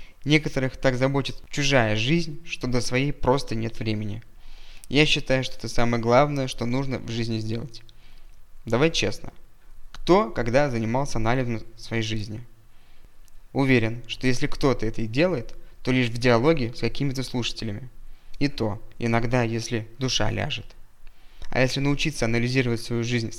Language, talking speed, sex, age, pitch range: Russian, 145 wpm, male, 20-39, 115-135 Hz